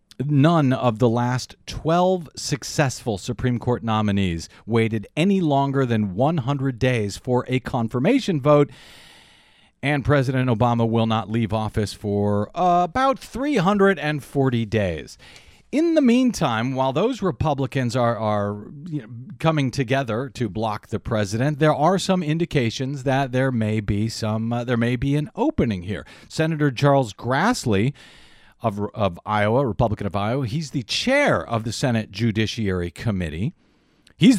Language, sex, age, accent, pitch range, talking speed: English, male, 40-59, American, 110-155 Hz, 140 wpm